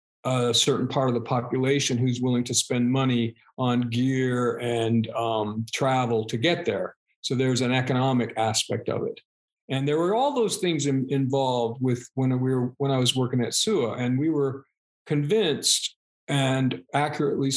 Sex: male